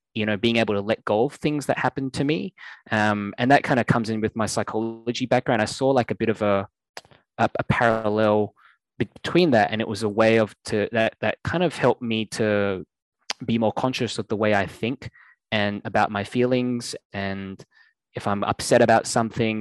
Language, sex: English, male